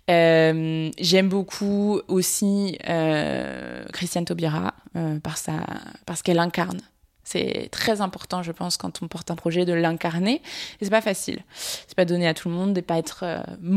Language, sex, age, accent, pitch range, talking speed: French, female, 20-39, French, 170-195 Hz, 165 wpm